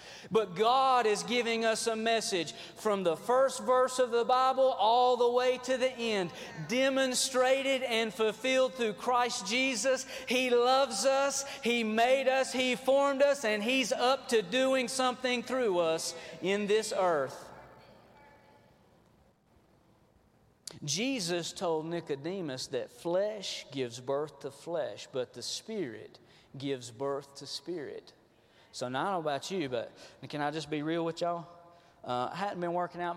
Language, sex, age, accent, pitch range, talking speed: English, male, 40-59, American, 160-250 Hz, 150 wpm